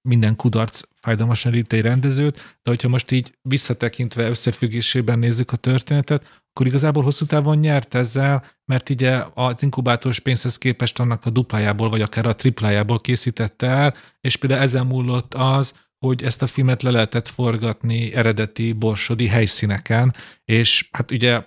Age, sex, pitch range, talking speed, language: 40-59, male, 110-130 Hz, 150 wpm, Hungarian